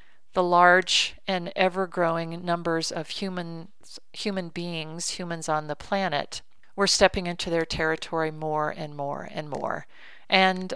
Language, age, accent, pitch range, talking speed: English, 40-59, American, 160-190 Hz, 130 wpm